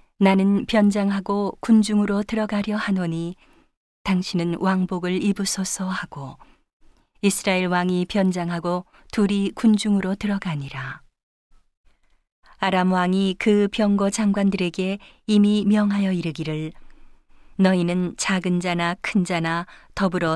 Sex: female